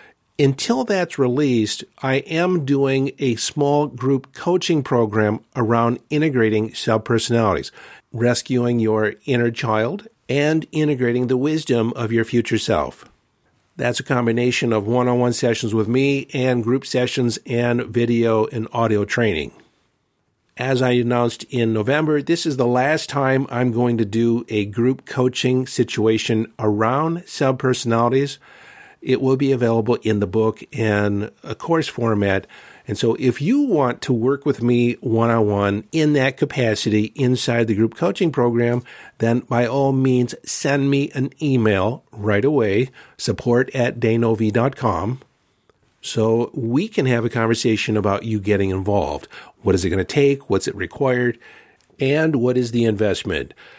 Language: English